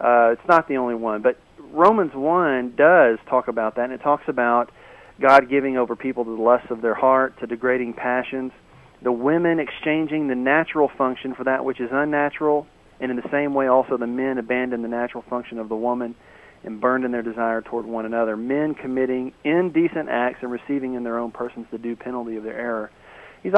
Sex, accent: male, American